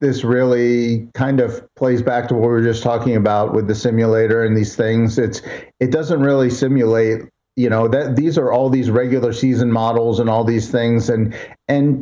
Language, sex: English, male